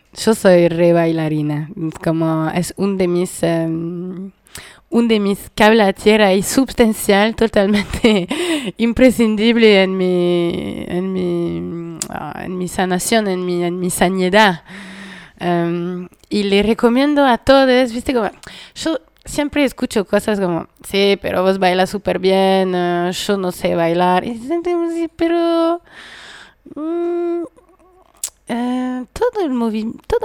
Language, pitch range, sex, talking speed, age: Spanish, 185-250 Hz, female, 125 wpm, 20-39